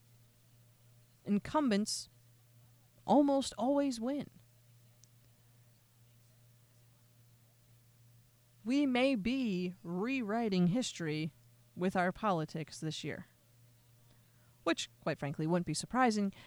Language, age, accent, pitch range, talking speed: English, 30-49, American, 145-210 Hz, 75 wpm